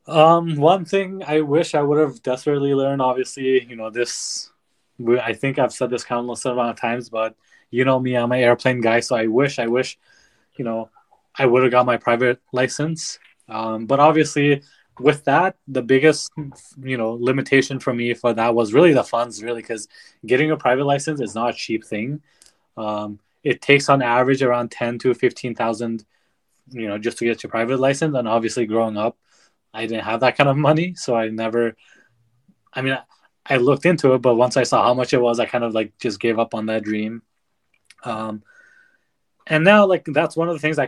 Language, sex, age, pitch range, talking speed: English, male, 20-39, 115-140 Hz, 205 wpm